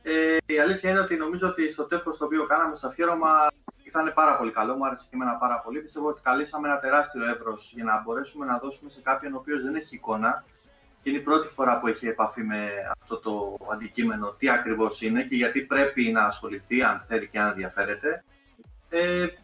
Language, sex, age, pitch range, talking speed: Greek, male, 30-49, 120-160 Hz, 205 wpm